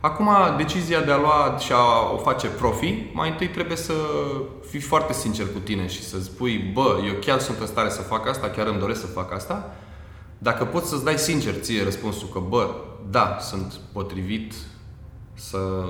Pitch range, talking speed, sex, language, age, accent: 100-130 Hz, 190 wpm, male, Romanian, 20-39, native